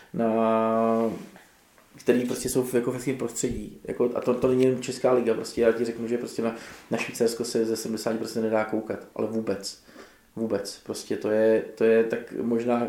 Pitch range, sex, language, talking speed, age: 115-125 Hz, male, Czech, 180 wpm, 20-39